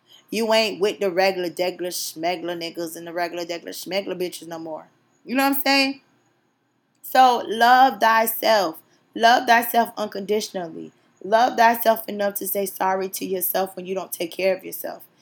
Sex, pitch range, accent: female, 185-225 Hz, American